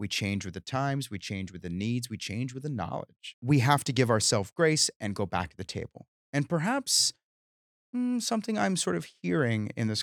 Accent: American